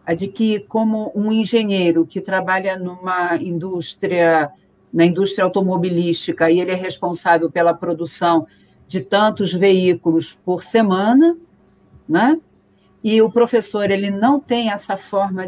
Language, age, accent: Portuguese, 50-69, Brazilian